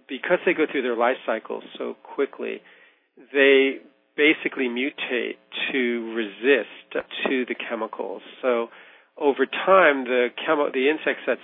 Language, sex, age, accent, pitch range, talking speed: English, male, 40-59, American, 120-140 Hz, 125 wpm